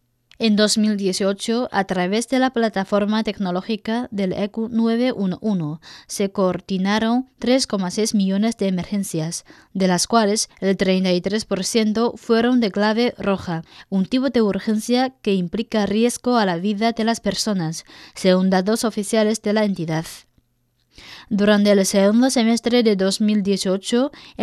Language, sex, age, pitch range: Chinese, female, 20-39, 190-230 Hz